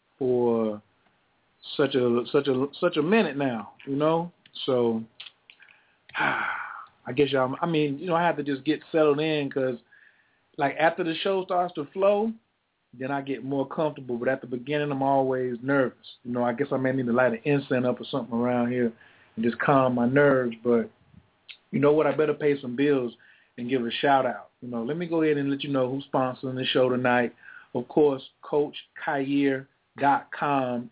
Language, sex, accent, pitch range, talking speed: English, male, American, 130-165 Hz, 200 wpm